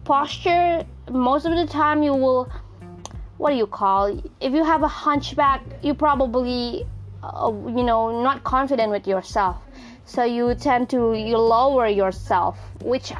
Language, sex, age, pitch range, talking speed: English, female, 20-39, 200-270 Hz, 150 wpm